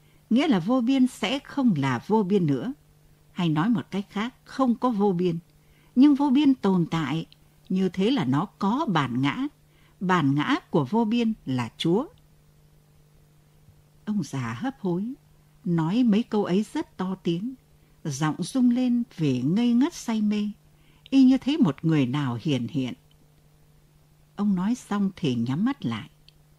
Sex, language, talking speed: female, Vietnamese, 160 wpm